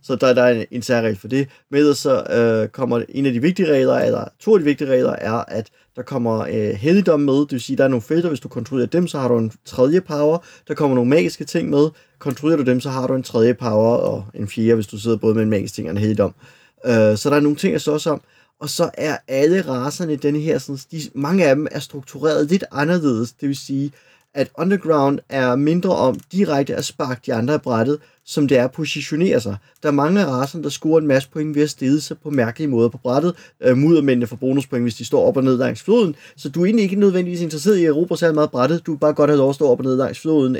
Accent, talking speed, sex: native, 270 wpm, male